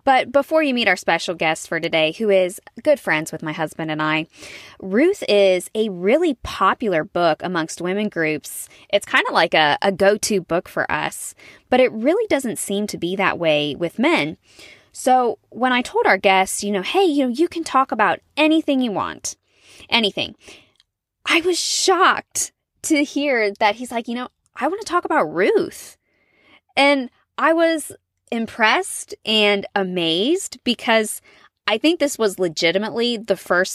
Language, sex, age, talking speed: English, female, 20-39, 175 wpm